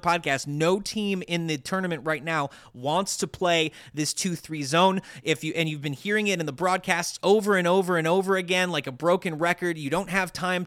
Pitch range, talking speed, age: 145-180 Hz, 215 wpm, 30-49